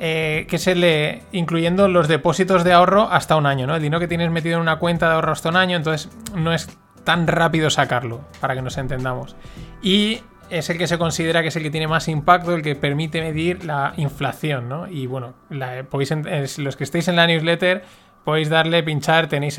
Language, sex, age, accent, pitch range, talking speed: Spanish, male, 20-39, Spanish, 140-175 Hz, 215 wpm